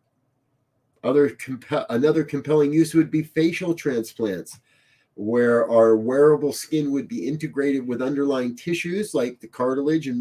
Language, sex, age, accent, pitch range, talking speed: English, male, 30-49, American, 125-170 Hz, 135 wpm